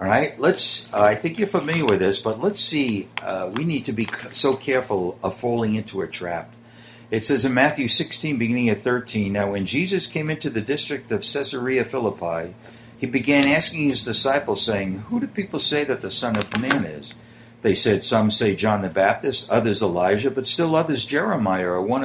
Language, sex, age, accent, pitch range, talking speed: English, male, 60-79, American, 110-145 Hz, 200 wpm